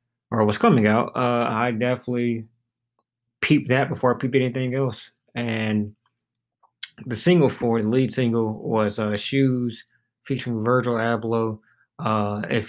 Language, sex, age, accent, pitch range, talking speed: English, male, 20-39, American, 110-125 Hz, 135 wpm